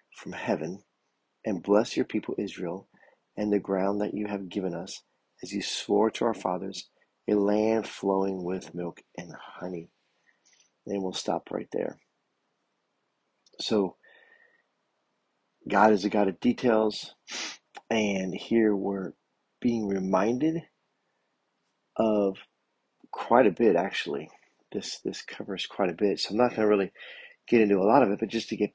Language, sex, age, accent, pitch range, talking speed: English, male, 40-59, American, 95-110 Hz, 150 wpm